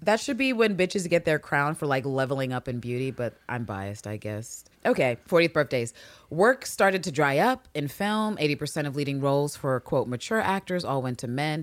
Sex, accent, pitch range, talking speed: female, American, 135-195 Hz, 210 wpm